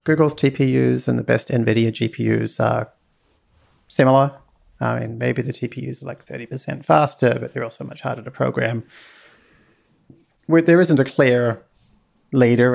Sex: male